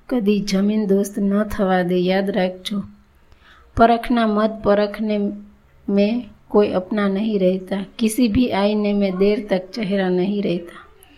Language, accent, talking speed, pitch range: Gujarati, native, 135 wpm, 200-220 Hz